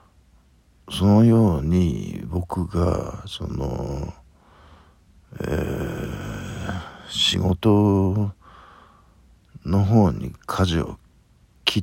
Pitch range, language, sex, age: 80-100 Hz, Japanese, male, 60-79